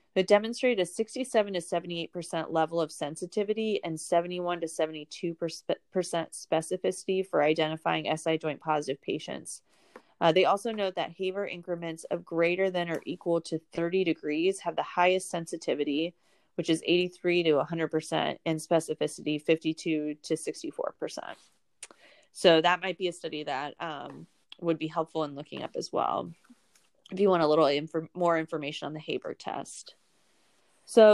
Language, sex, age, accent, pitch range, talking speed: English, female, 20-39, American, 160-190 Hz, 145 wpm